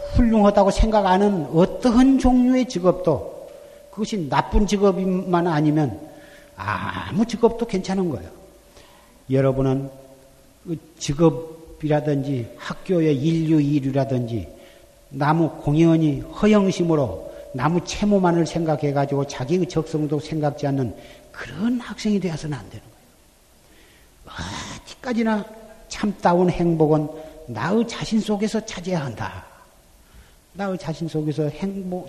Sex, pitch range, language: male, 145-205 Hz, Korean